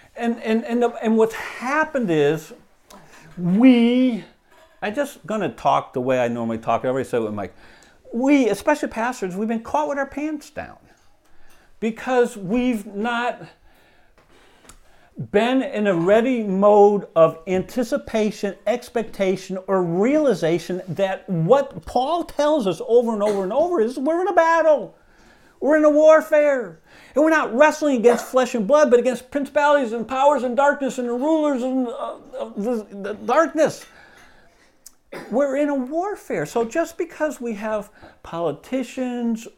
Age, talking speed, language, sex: 50-69, 155 wpm, English, male